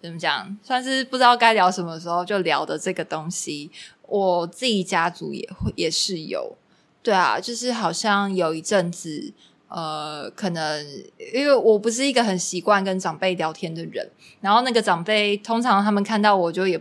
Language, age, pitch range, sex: Chinese, 20-39, 175-215 Hz, female